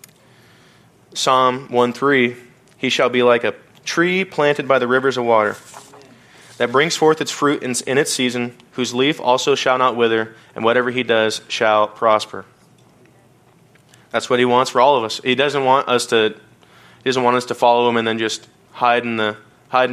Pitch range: 115-125 Hz